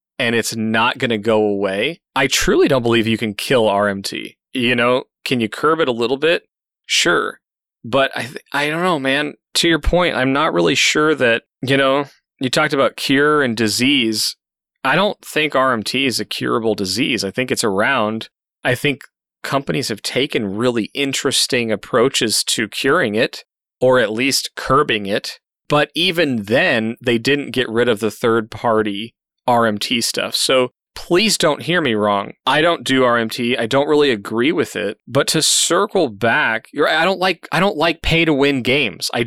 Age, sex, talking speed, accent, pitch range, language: 30-49, male, 185 wpm, American, 115-155 Hz, English